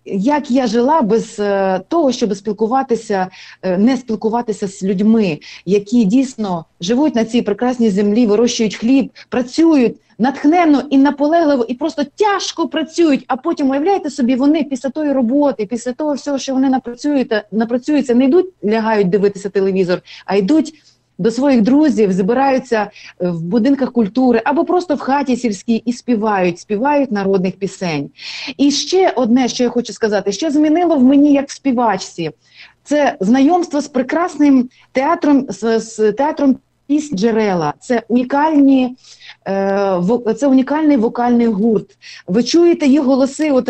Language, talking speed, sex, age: Russian, 135 wpm, female, 30-49